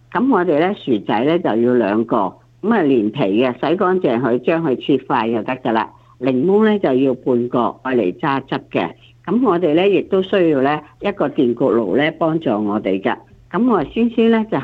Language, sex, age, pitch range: Chinese, female, 50-69, 125-180 Hz